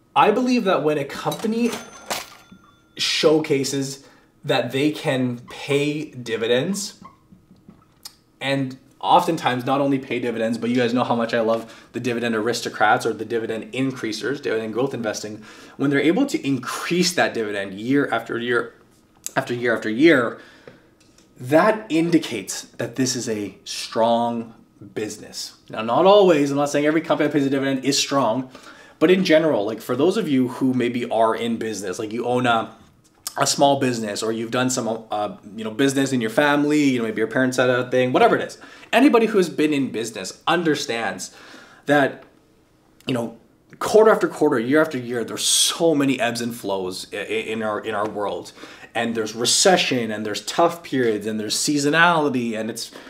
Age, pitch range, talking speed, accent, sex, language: 20-39, 115-150 Hz, 175 wpm, American, male, English